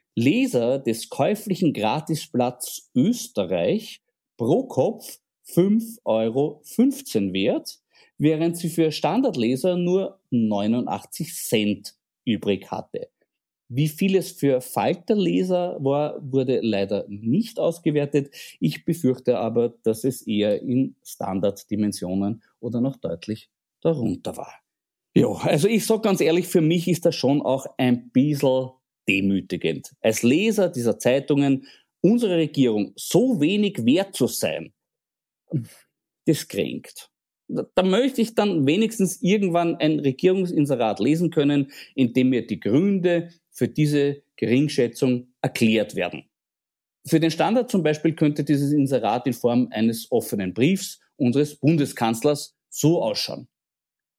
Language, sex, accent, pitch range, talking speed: German, male, German, 125-180 Hz, 120 wpm